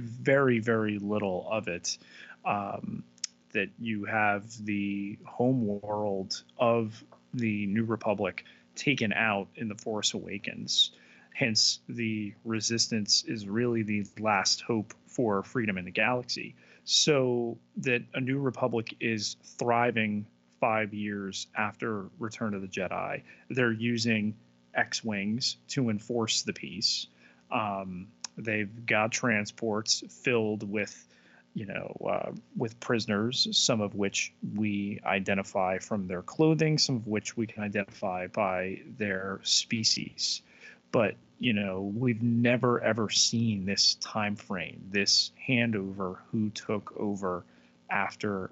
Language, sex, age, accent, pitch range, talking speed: English, male, 30-49, American, 100-115 Hz, 125 wpm